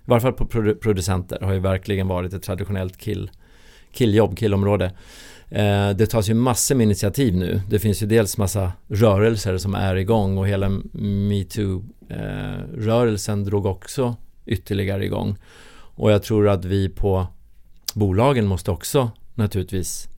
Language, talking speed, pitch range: Swedish, 140 wpm, 95-110 Hz